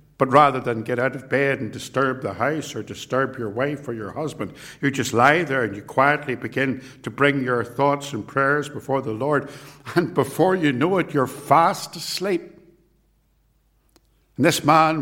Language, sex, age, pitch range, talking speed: English, male, 60-79, 110-145 Hz, 185 wpm